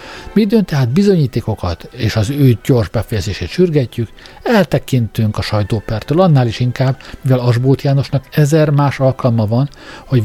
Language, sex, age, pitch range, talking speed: Hungarian, male, 60-79, 110-140 Hz, 135 wpm